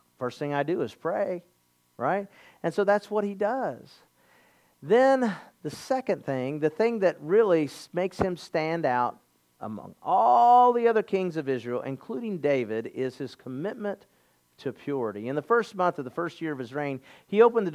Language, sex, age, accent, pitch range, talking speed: English, male, 50-69, American, 145-235 Hz, 180 wpm